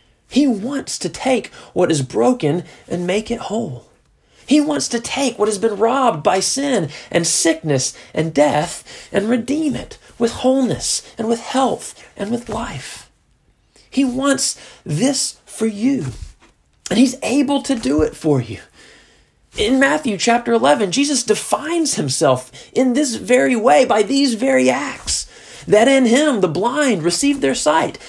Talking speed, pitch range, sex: 155 wpm, 155-265 Hz, male